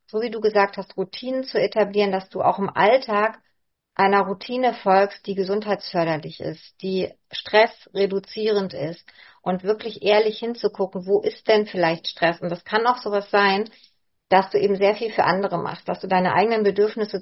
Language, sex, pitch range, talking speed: German, female, 190-215 Hz, 175 wpm